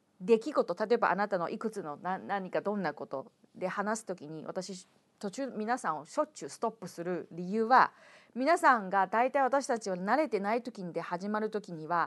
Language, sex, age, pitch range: Japanese, female, 40-59, 190-275 Hz